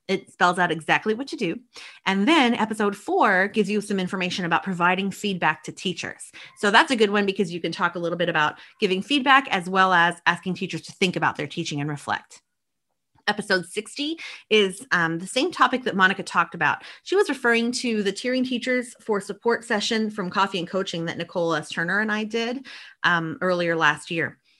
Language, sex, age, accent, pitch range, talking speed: English, female, 30-49, American, 175-225 Hz, 200 wpm